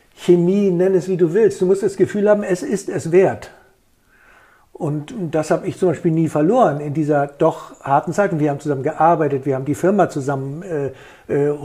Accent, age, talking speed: German, 60-79, 200 wpm